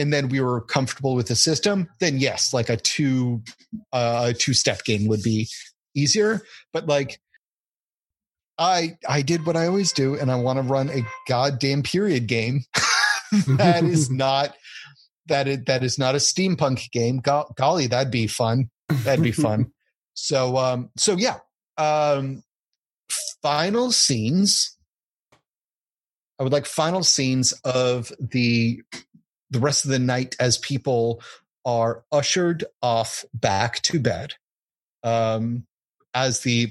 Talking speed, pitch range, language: 145 wpm, 115-145 Hz, English